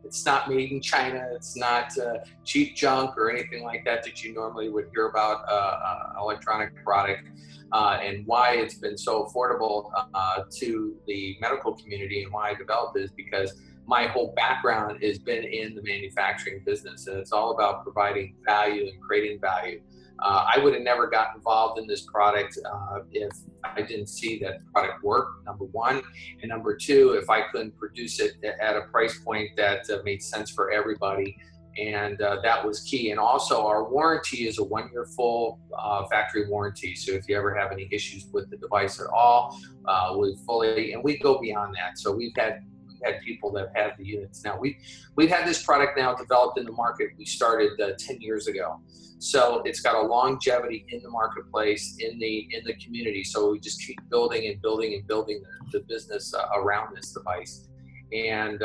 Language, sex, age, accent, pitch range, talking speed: English, male, 30-49, American, 100-130 Hz, 195 wpm